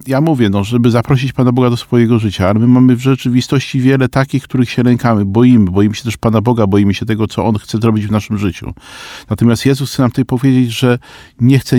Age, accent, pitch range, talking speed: 50-69, native, 110-140 Hz, 225 wpm